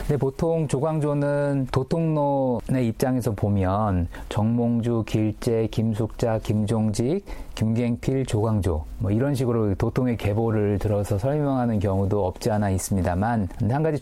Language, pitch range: Korean, 105-130 Hz